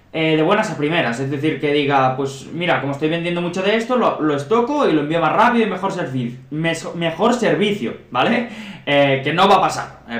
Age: 20-39